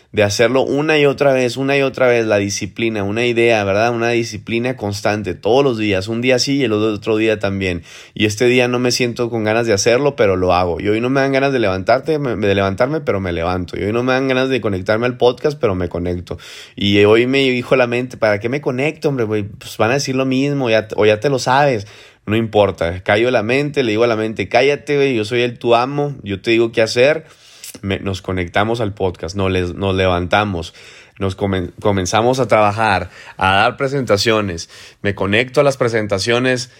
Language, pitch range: Spanish, 100-130 Hz